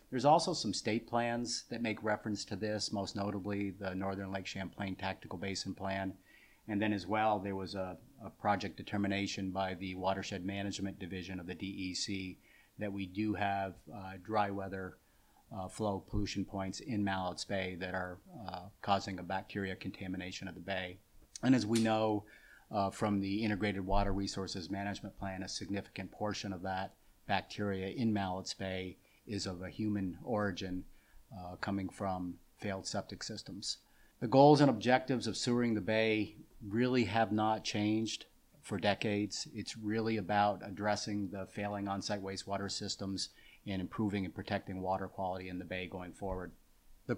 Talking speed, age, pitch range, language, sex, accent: 165 wpm, 40-59, 95-110 Hz, English, male, American